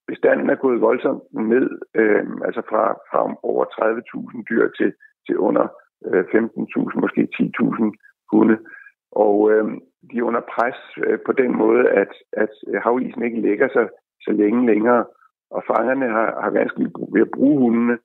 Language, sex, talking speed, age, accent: Danish, male, 155 wpm, 60-79, native